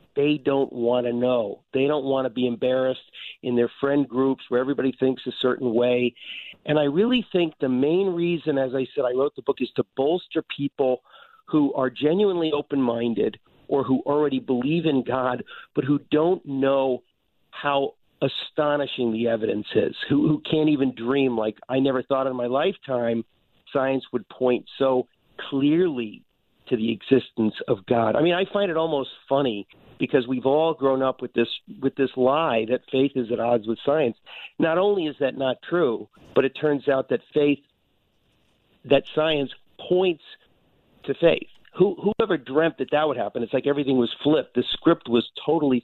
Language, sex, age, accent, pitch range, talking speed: English, male, 50-69, American, 125-150 Hz, 180 wpm